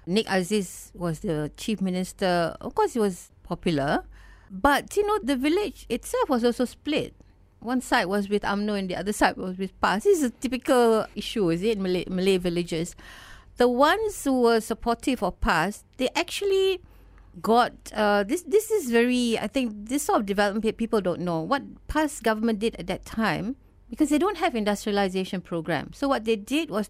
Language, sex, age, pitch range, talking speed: English, female, 50-69, 185-250 Hz, 185 wpm